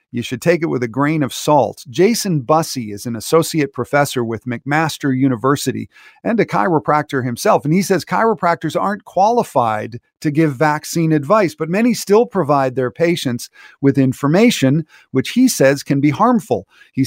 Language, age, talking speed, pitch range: English, 40-59, 165 wpm, 125-165 Hz